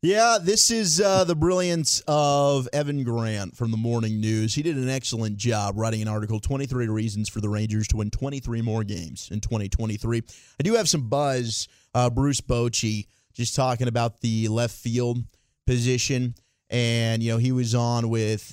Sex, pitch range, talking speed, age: male, 110-125 Hz, 180 wpm, 30-49